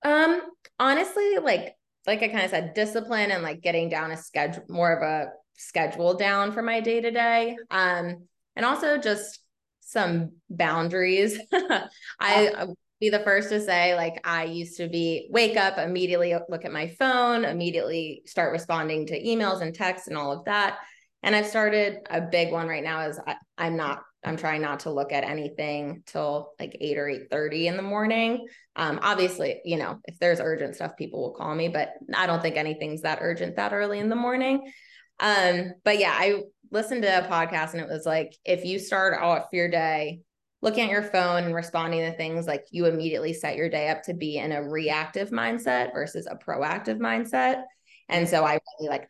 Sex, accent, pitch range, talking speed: female, American, 160-210 Hz, 190 wpm